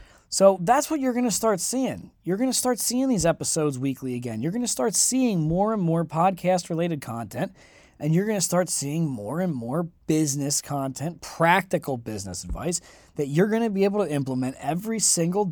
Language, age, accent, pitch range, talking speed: English, 20-39, American, 145-225 Hz, 200 wpm